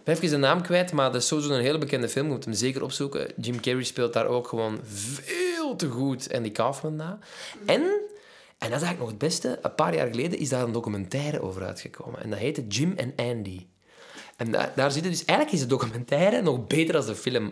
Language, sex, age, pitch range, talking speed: Dutch, male, 20-39, 115-145 Hz, 235 wpm